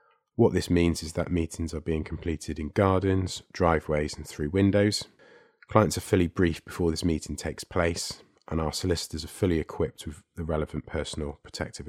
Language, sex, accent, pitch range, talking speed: English, male, British, 75-90 Hz, 175 wpm